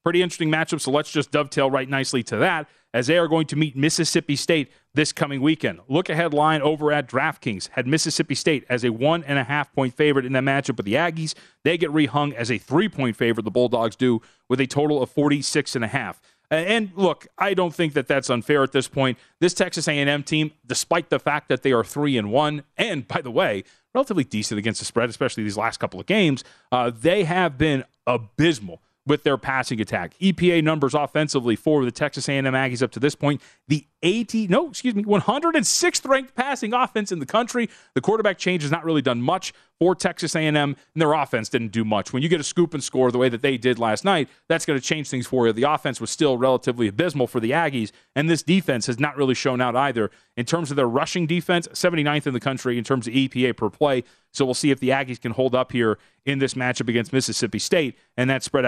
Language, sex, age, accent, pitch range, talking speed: English, male, 30-49, American, 125-165 Hz, 225 wpm